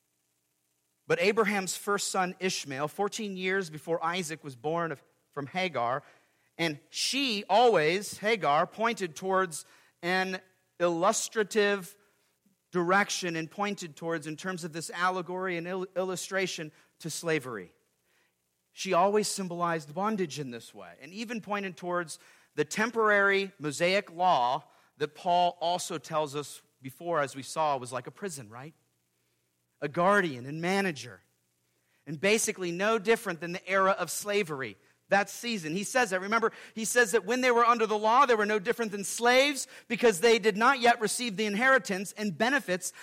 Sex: male